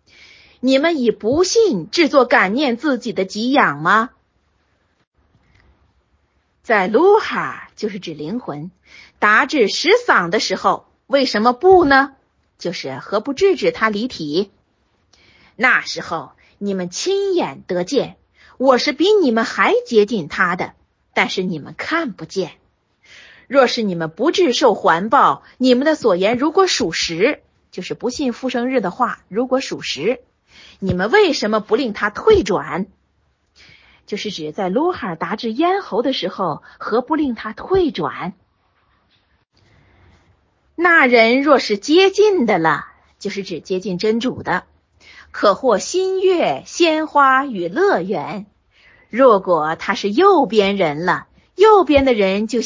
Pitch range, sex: 190-290 Hz, female